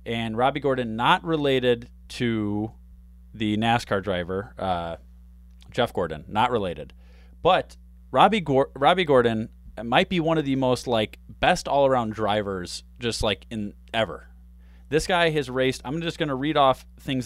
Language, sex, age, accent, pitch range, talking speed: English, male, 30-49, American, 80-130 Hz, 150 wpm